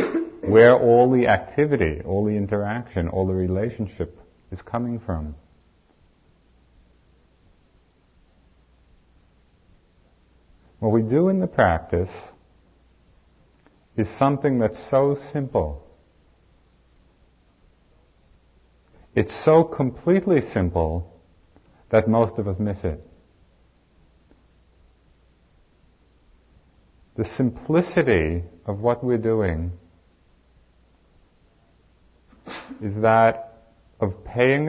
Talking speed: 75 wpm